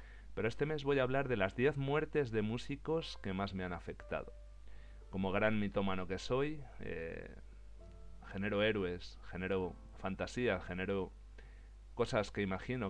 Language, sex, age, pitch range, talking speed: Spanish, male, 40-59, 90-110 Hz, 145 wpm